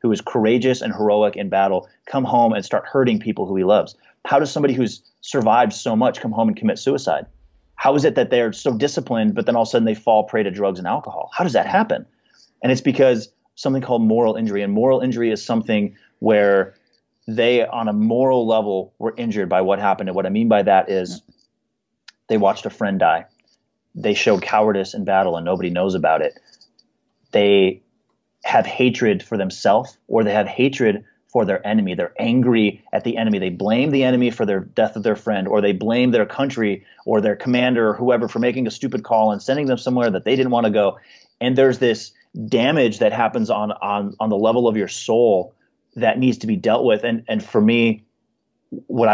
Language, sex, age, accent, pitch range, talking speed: English, male, 30-49, American, 100-125 Hz, 210 wpm